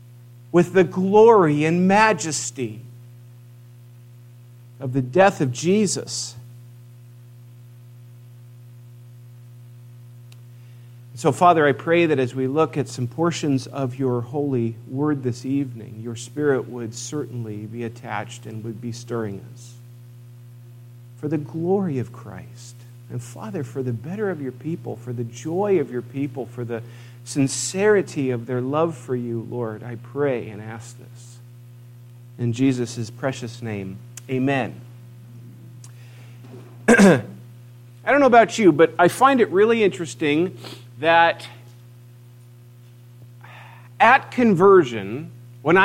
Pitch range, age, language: 120-145 Hz, 50-69, English